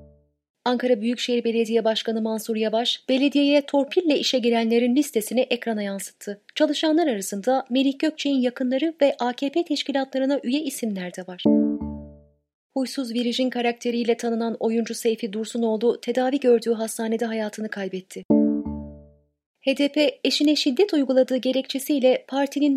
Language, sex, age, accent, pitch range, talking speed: Turkish, female, 30-49, native, 210-270 Hz, 115 wpm